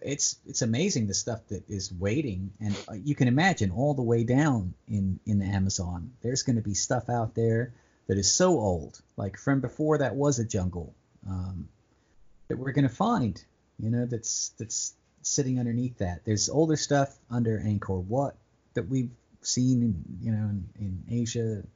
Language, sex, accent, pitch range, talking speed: English, male, American, 100-120 Hz, 180 wpm